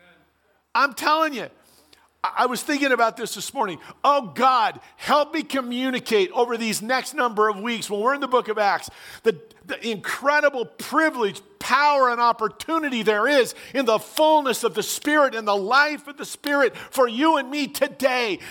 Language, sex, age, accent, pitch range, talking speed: English, male, 50-69, American, 180-275 Hz, 175 wpm